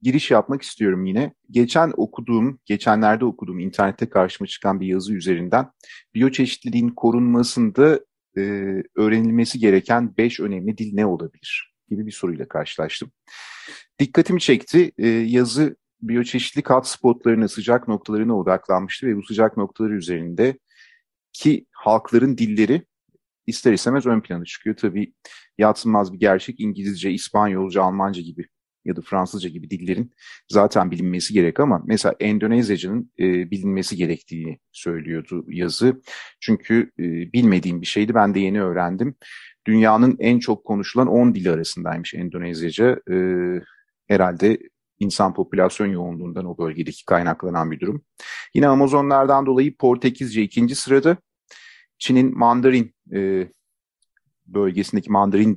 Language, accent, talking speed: Turkish, native, 120 wpm